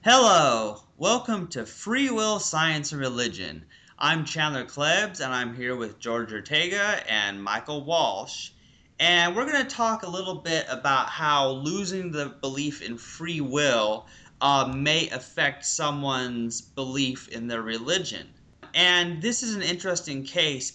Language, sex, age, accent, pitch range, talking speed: English, male, 30-49, American, 115-160 Hz, 140 wpm